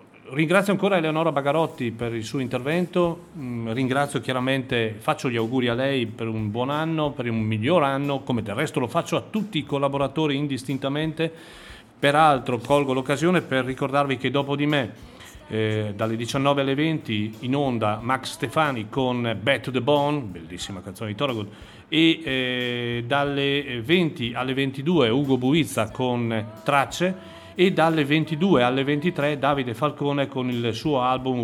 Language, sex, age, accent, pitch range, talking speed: Italian, male, 40-59, native, 120-155 Hz, 155 wpm